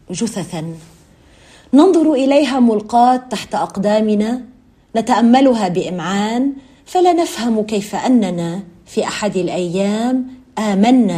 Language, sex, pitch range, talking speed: Arabic, female, 170-225 Hz, 85 wpm